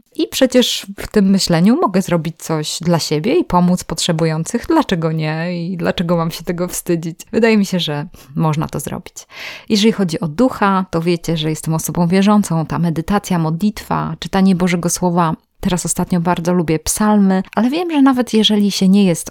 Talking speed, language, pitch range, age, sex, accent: 175 wpm, Polish, 165-200 Hz, 20-39, female, native